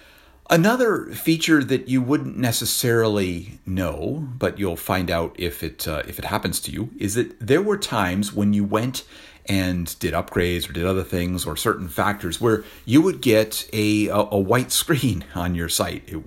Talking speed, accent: 185 wpm, American